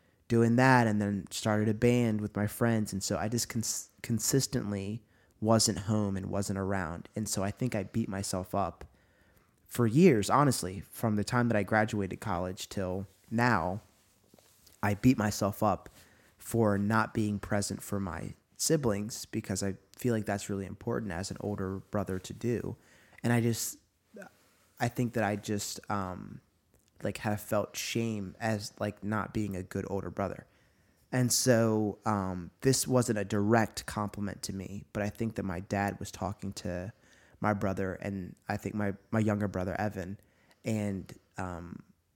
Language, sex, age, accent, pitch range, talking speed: English, male, 20-39, American, 95-110 Hz, 165 wpm